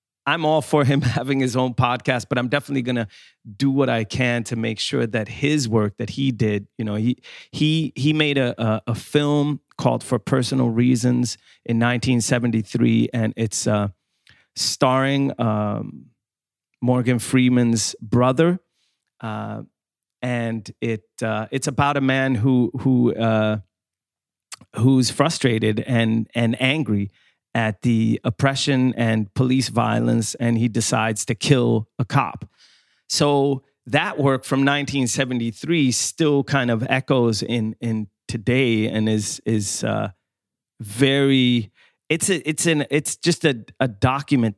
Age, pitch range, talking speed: 30-49, 115-135 Hz, 140 wpm